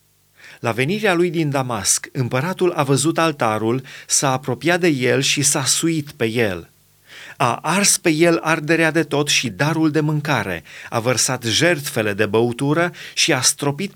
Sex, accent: male, native